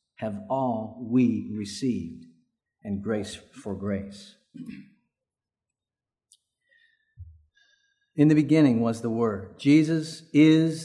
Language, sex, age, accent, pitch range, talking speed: English, male, 50-69, American, 135-205 Hz, 90 wpm